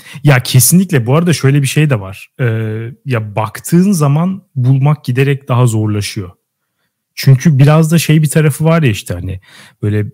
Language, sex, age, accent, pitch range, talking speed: Turkish, male, 30-49, native, 130-160 Hz, 165 wpm